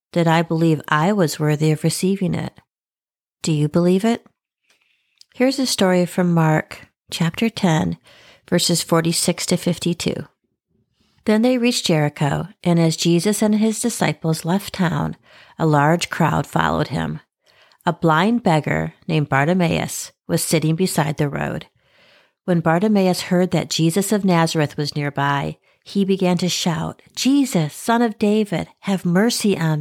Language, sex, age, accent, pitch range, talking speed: English, female, 60-79, American, 160-205 Hz, 145 wpm